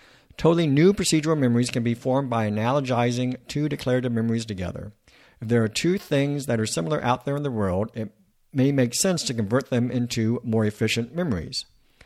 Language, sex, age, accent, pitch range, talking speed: English, male, 60-79, American, 110-135 Hz, 185 wpm